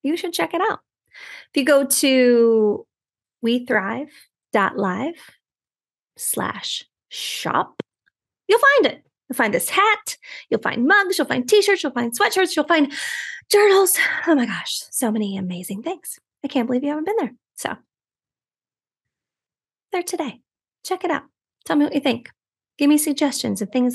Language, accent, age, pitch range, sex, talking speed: English, American, 20-39, 240-325 Hz, female, 155 wpm